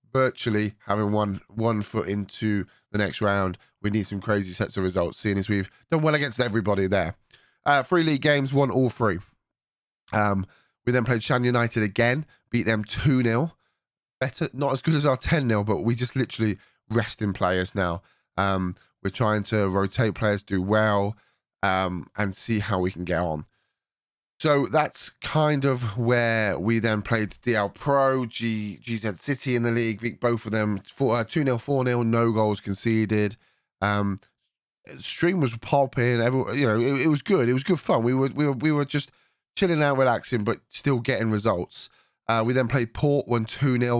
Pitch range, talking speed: 100-130 Hz, 190 wpm